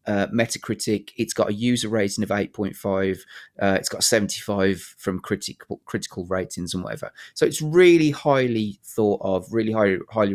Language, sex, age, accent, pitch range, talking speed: English, male, 30-49, British, 100-125 Hz, 160 wpm